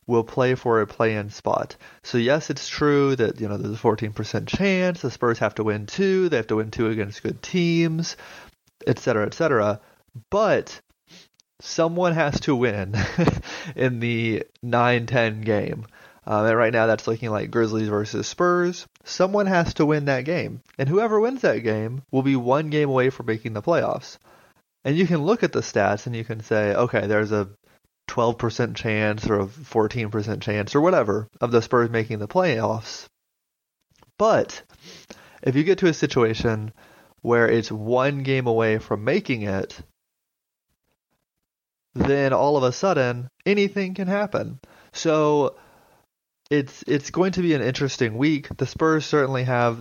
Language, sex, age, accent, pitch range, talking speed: English, male, 30-49, American, 110-155 Hz, 165 wpm